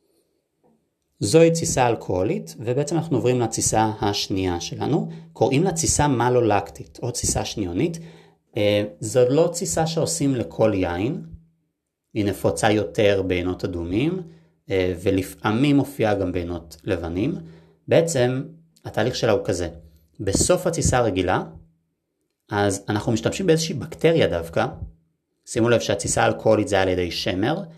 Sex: male